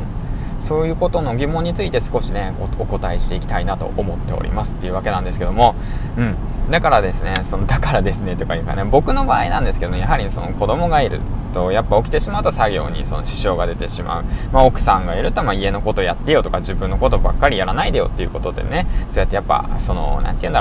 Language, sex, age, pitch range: Japanese, male, 20-39, 95-120 Hz